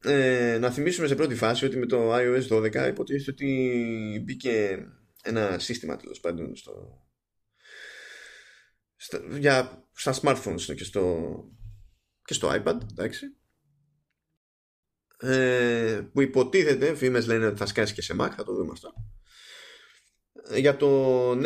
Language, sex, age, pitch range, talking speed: Greek, male, 20-39, 105-140 Hz, 125 wpm